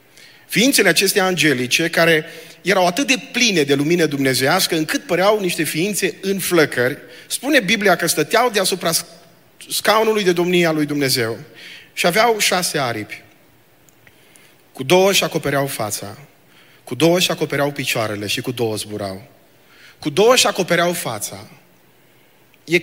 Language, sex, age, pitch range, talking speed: Romanian, male, 30-49, 130-185 Hz, 135 wpm